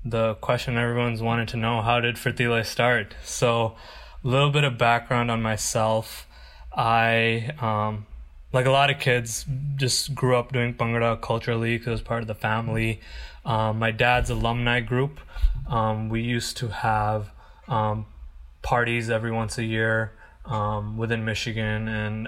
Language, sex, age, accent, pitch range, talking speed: English, male, 20-39, American, 110-120 Hz, 155 wpm